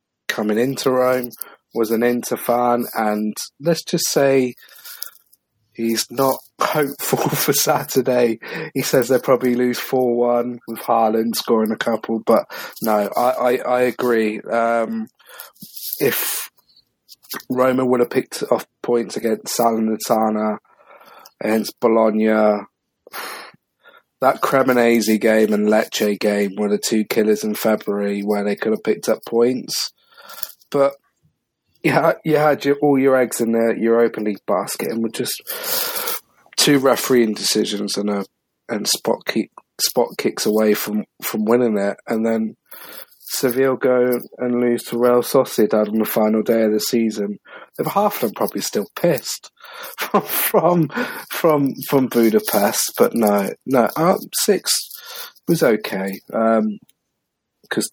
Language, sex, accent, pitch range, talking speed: English, male, British, 110-130 Hz, 135 wpm